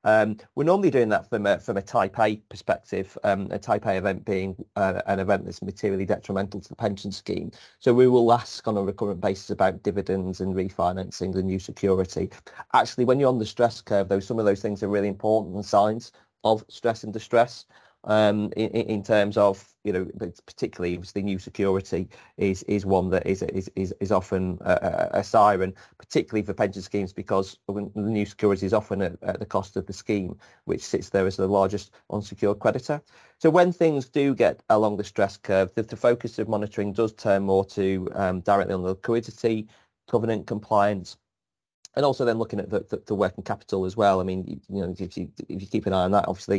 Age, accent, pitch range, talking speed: 30-49, British, 95-115 Hz, 210 wpm